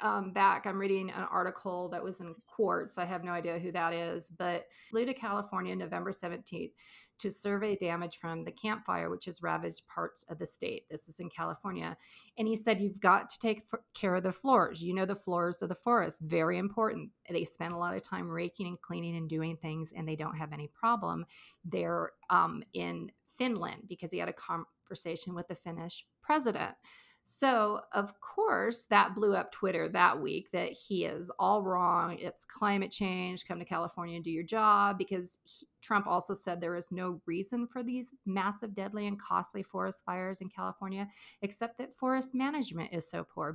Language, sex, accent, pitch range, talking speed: English, female, American, 170-210 Hz, 195 wpm